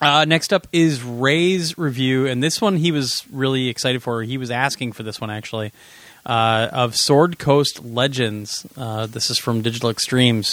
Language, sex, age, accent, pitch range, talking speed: English, male, 20-39, American, 125-160 Hz, 180 wpm